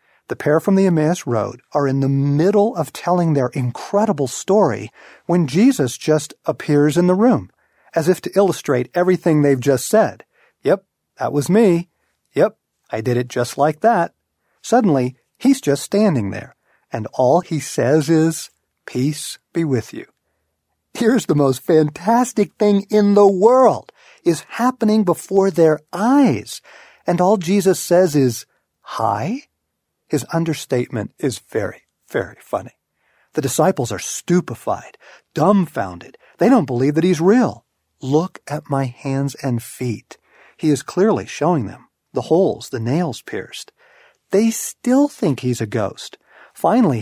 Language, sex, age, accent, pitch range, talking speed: English, male, 50-69, American, 135-190 Hz, 145 wpm